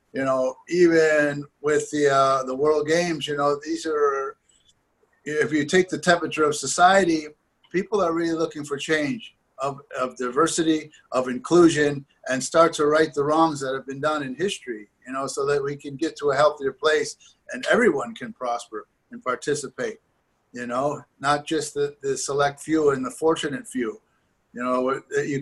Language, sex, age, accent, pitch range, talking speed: English, male, 50-69, American, 140-165 Hz, 175 wpm